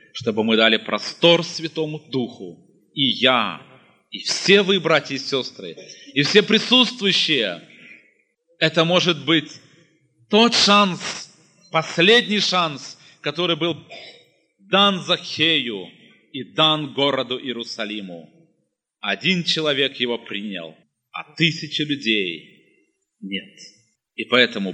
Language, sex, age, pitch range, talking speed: Russian, male, 30-49, 120-185 Hz, 100 wpm